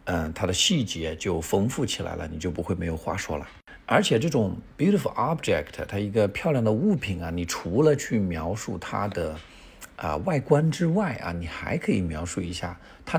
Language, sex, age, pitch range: Chinese, male, 50-69, 85-105 Hz